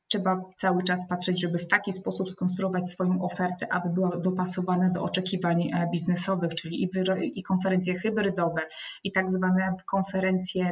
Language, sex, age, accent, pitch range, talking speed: Polish, female, 20-39, native, 180-200 Hz, 140 wpm